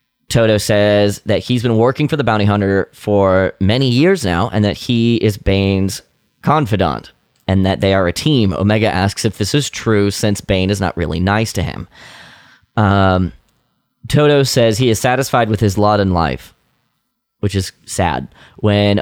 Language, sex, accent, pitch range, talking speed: English, male, American, 100-120 Hz, 175 wpm